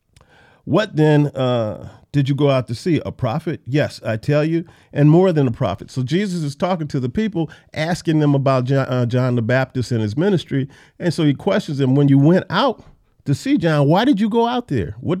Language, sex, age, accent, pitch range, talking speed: English, male, 40-59, American, 125-170 Hz, 225 wpm